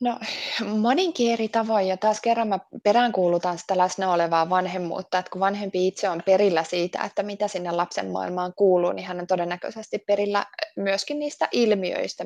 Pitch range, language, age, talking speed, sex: 185-230 Hz, Finnish, 20-39, 165 wpm, female